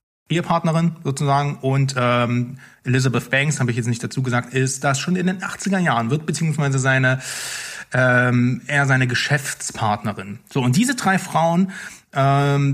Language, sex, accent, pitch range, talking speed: German, male, German, 125-160 Hz, 140 wpm